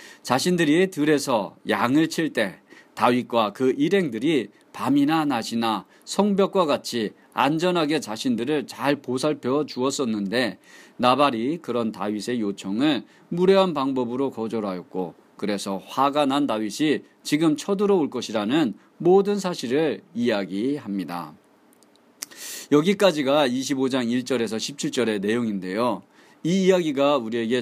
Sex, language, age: male, Korean, 40-59